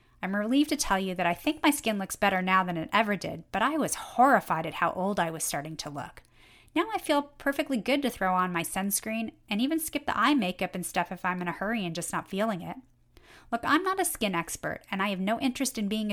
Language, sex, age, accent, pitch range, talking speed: English, female, 30-49, American, 185-245 Hz, 260 wpm